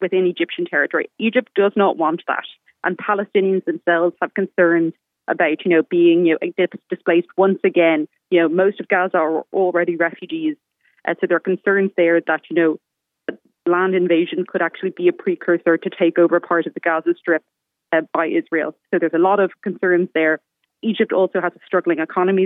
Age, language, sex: 20-39, English, female